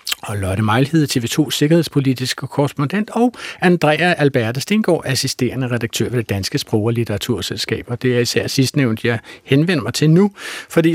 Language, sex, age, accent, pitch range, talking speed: Danish, male, 60-79, native, 120-160 Hz, 150 wpm